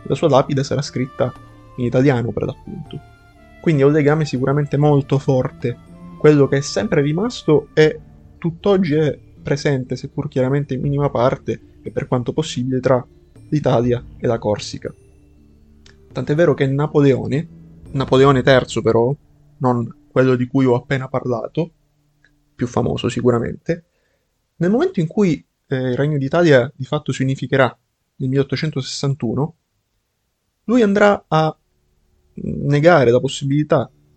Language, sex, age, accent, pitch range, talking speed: Italian, male, 20-39, native, 120-150 Hz, 135 wpm